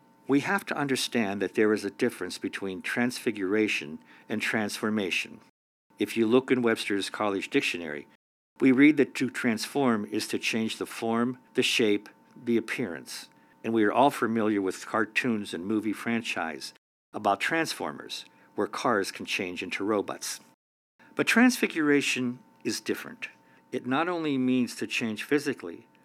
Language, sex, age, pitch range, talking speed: English, male, 60-79, 100-130 Hz, 145 wpm